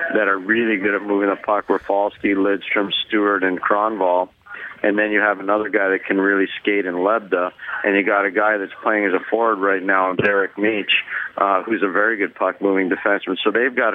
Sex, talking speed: male, 210 wpm